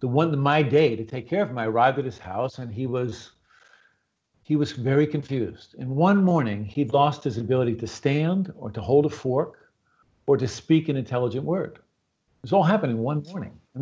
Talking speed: 215 wpm